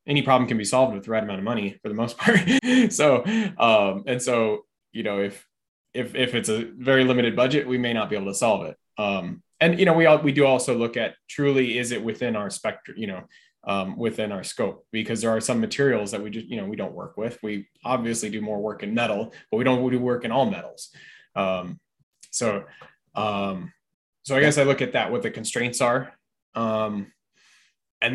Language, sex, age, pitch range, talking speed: English, male, 20-39, 105-135 Hz, 225 wpm